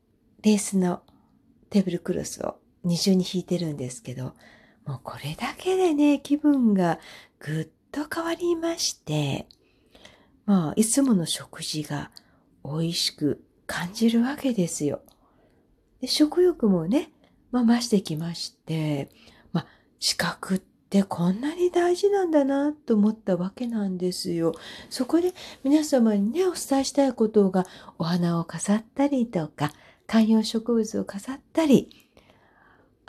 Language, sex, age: Japanese, female, 40-59